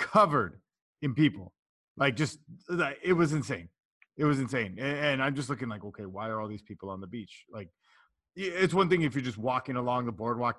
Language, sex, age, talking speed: English, male, 30-49, 205 wpm